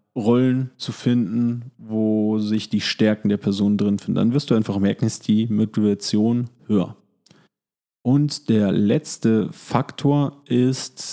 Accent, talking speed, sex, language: German, 135 wpm, male, German